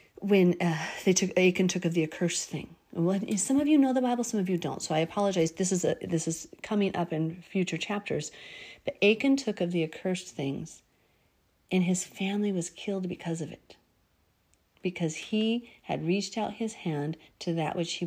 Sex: female